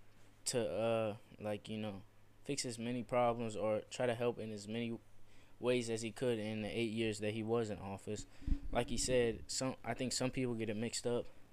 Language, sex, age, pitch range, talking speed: English, male, 20-39, 100-115 Hz, 215 wpm